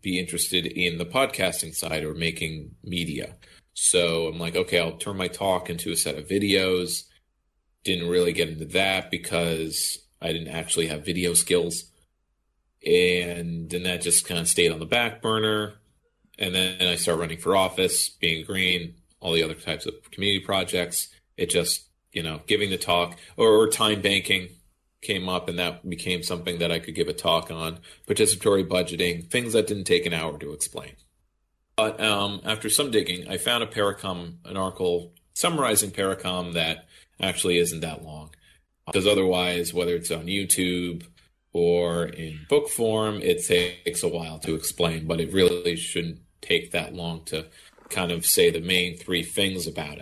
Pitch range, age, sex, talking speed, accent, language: 85-95 Hz, 30-49, male, 175 wpm, American, English